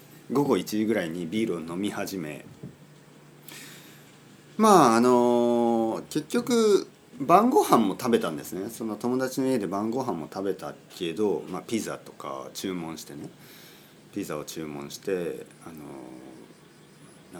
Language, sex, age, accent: Japanese, male, 40-59, native